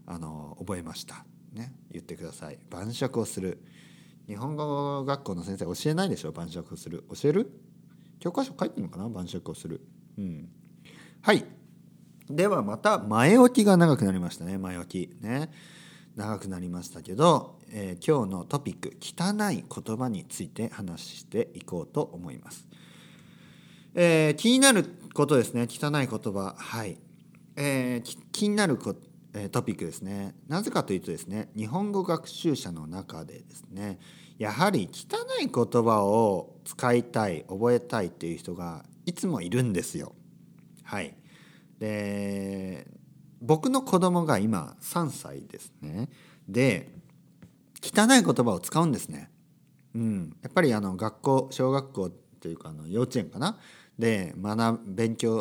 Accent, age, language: native, 40-59, Japanese